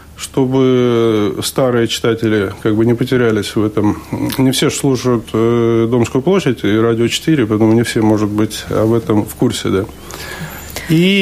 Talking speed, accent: 155 wpm, native